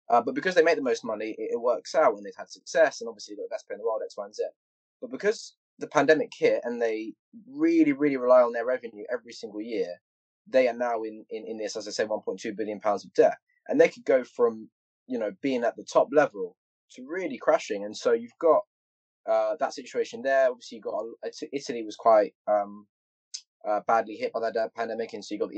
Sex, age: male, 20-39